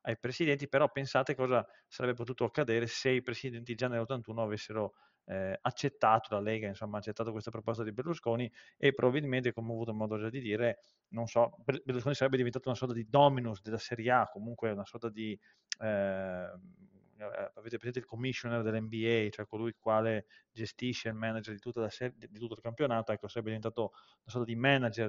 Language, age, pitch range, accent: Italian, 30-49, 105-125 Hz, native